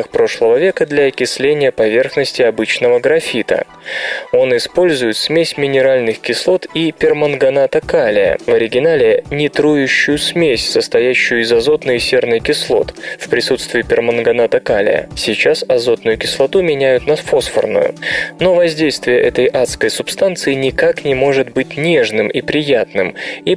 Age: 20-39